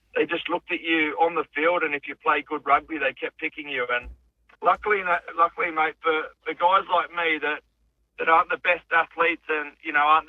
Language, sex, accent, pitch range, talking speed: English, male, Australian, 140-160 Hz, 215 wpm